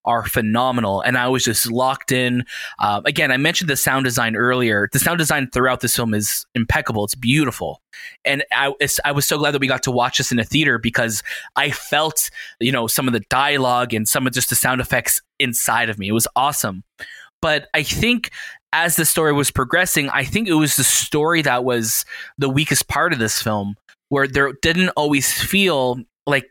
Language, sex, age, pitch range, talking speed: English, male, 20-39, 120-150 Hz, 205 wpm